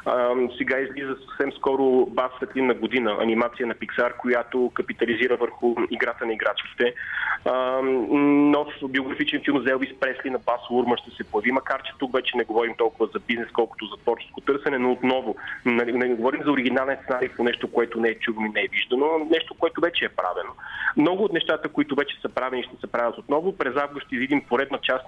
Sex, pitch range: male, 125-165 Hz